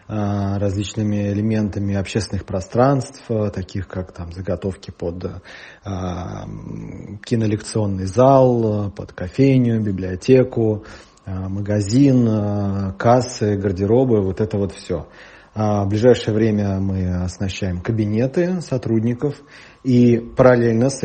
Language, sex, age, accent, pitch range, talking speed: Russian, male, 30-49, native, 100-120 Hz, 85 wpm